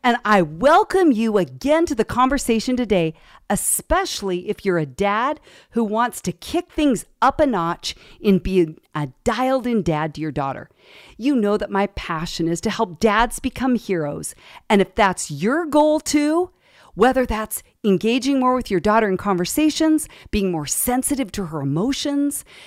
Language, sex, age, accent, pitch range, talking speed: English, female, 50-69, American, 180-265 Hz, 165 wpm